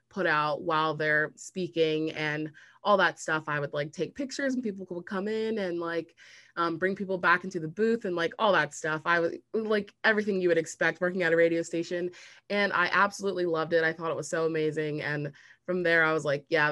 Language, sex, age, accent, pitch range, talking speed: English, female, 20-39, American, 155-180 Hz, 225 wpm